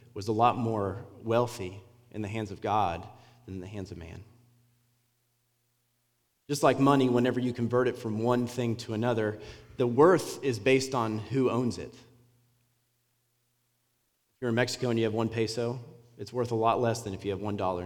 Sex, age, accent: male, 30-49, American